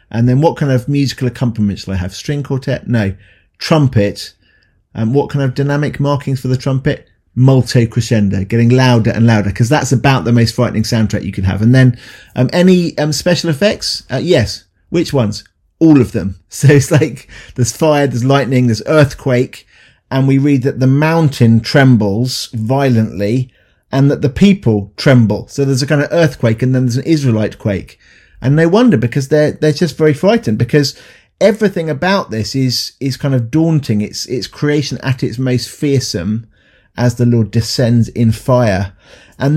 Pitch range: 115-145 Hz